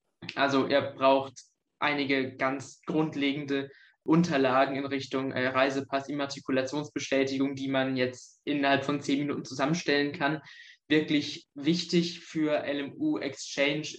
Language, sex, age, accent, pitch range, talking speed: German, male, 20-39, German, 135-155 Hz, 105 wpm